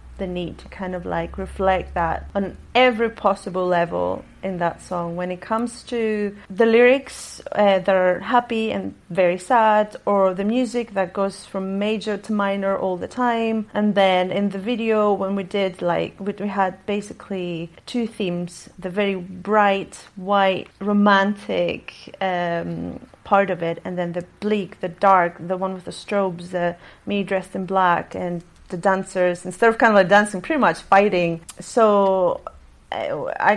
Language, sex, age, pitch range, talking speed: English, female, 30-49, 180-210 Hz, 165 wpm